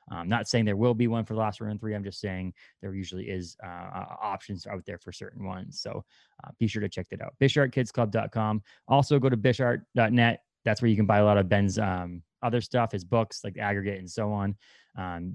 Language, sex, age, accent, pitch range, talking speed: English, male, 20-39, American, 95-120 Hz, 230 wpm